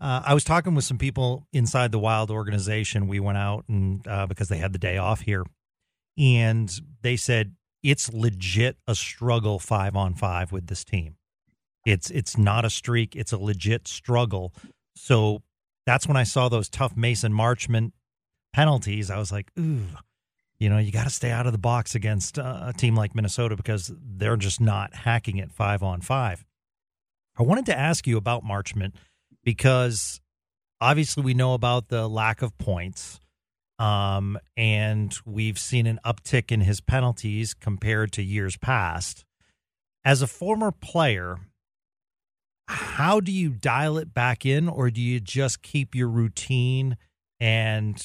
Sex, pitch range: male, 100-130 Hz